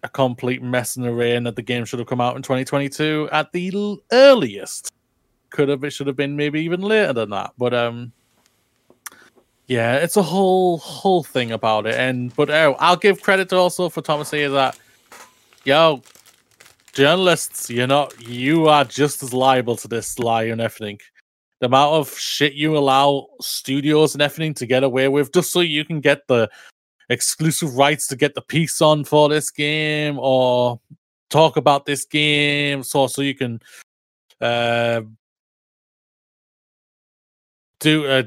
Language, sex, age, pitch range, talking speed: English, male, 20-39, 125-155 Hz, 170 wpm